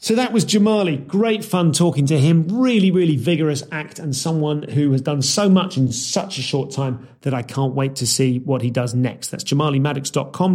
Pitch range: 130-180 Hz